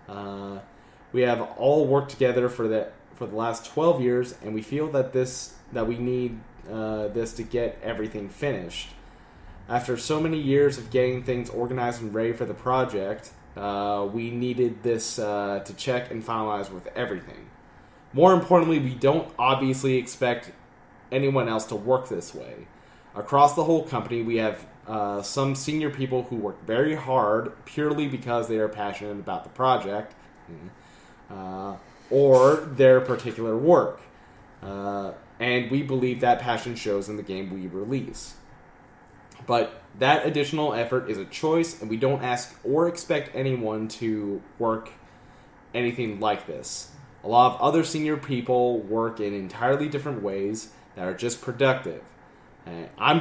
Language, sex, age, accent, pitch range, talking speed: English, male, 30-49, American, 105-135 Hz, 155 wpm